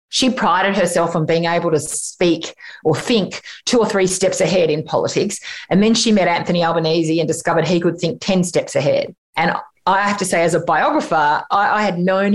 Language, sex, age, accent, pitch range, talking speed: English, female, 30-49, Australian, 165-200 Hz, 210 wpm